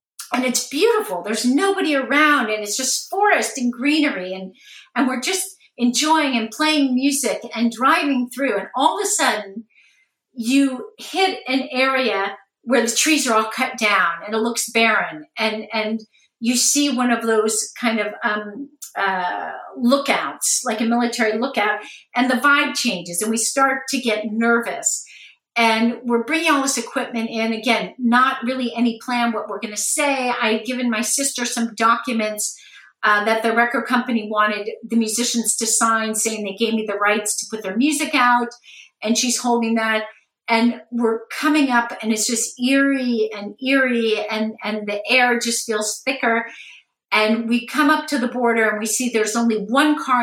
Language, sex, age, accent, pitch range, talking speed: English, female, 50-69, American, 220-265 Hz, 180 wpm